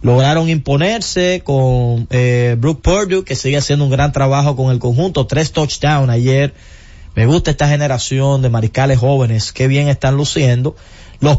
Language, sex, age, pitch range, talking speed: Spanish, male, 20-39, 125-155 Hz, 160 wpm